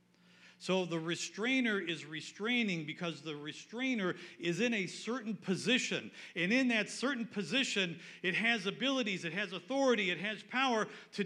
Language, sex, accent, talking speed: English, male, American, 150 wpm